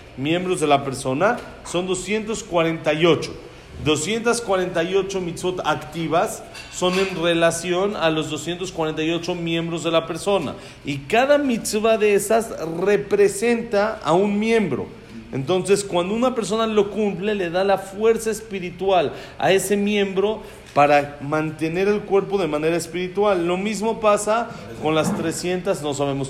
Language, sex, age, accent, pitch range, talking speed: Spanish, male, 40-59, Mexican, 155-205 Hz, 130 wpm